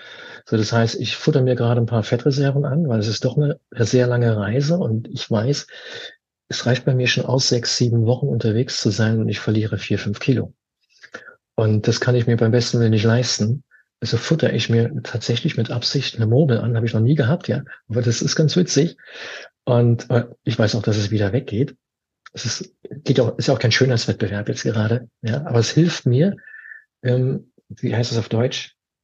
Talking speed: 210 wpm